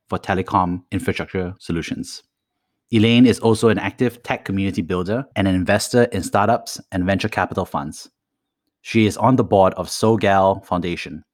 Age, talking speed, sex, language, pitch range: 30-49, 155 wpm, male, English, 90-110 Hz